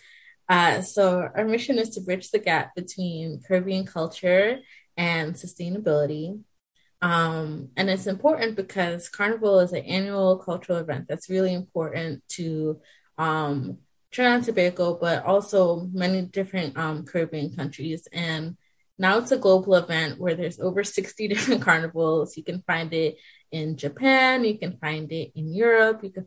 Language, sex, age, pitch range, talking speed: English, female, 20-39, 155-185 Hz, 150 wpm